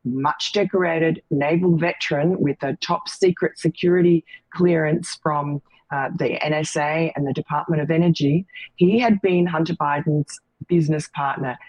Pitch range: 145-175 Hz